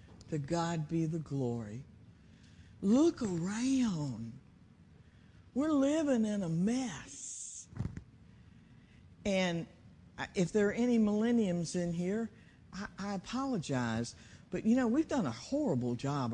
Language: English